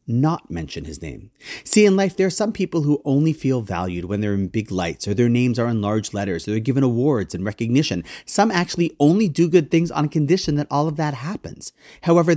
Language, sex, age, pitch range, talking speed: English, male, 30-49, 105-150 Hz, 235 wpm